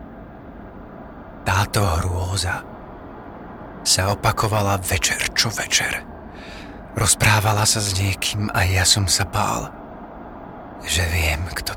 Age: 30-49